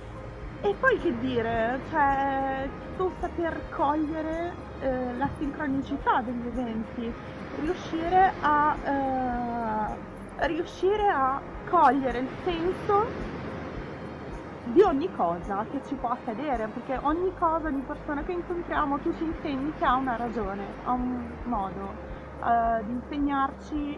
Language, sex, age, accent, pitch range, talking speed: Italian, female, 20-39, native, 250-315 Hz, 120 wpm